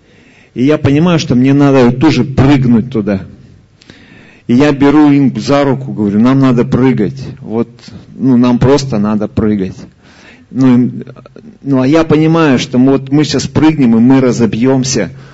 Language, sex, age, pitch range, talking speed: Russian, male, 40-59, 125-155 Hz, 155 wpm